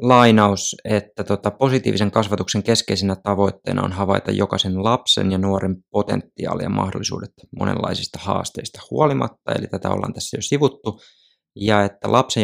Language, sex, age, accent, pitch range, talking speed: Finnish, male, 20-39, native, 95-110 Hz, 125 wpm